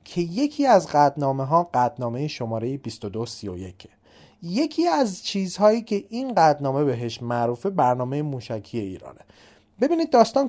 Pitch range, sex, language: 125-190 Hz, male, Persian